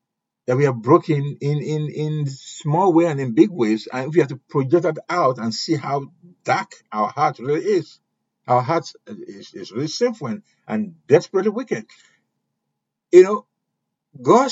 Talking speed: 170 wpm